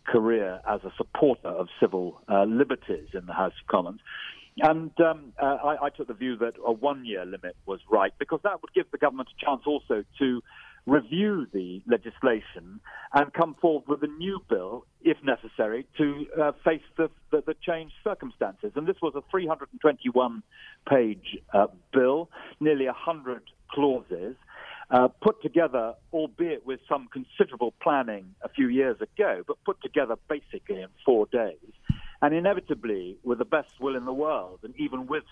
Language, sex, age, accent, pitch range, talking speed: English, male, 50-69, British, 120-165 Hz, 165 wpm